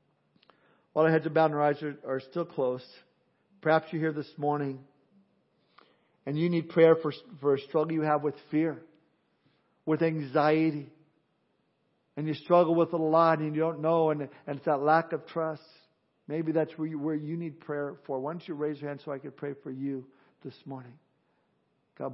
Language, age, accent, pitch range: English, 50-69, American, 145-170 Hz